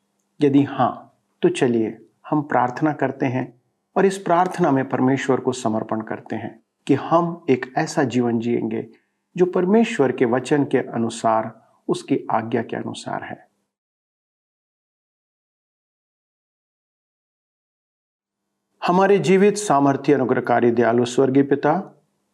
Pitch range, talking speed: 130-175 Hz, 110 wpm